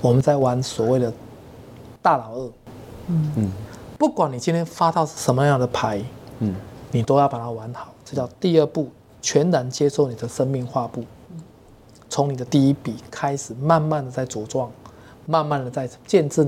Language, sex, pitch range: Chinese, male, 120-155 Hz